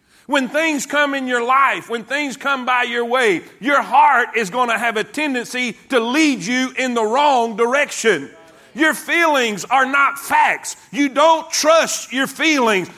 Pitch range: 230-285 Hz